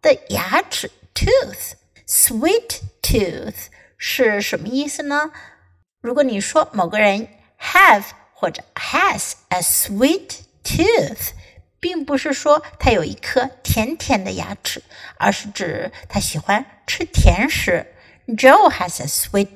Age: 60-79